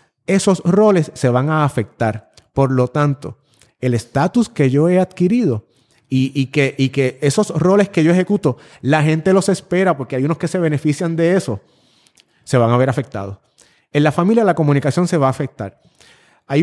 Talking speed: 190 wpm